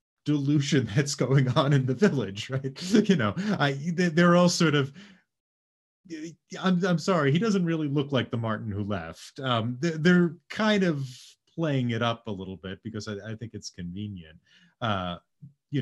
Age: 30-49